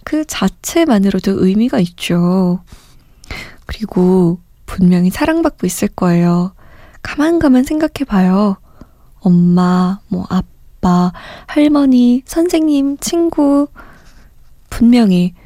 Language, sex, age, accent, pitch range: Korean, female, 20-39, native, 180-240 Hz